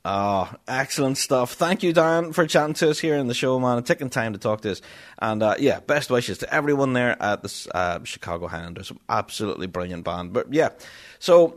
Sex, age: male, 30-49